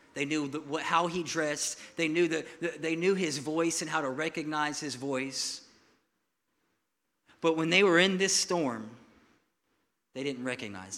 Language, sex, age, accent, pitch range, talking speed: English, male, 40-59, American, 155-205 Hz, 170 wpm